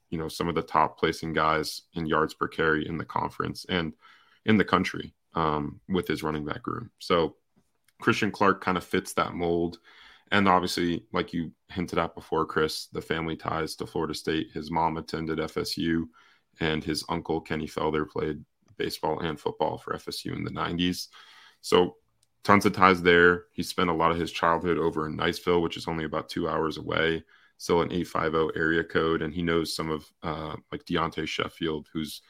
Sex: male